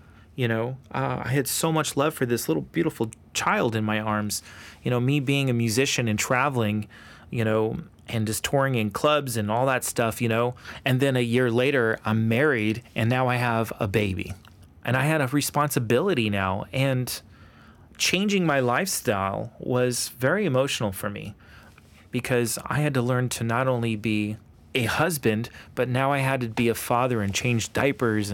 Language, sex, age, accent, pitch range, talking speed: English, male, 30-49, American, 110-135 Hz, 185 wpm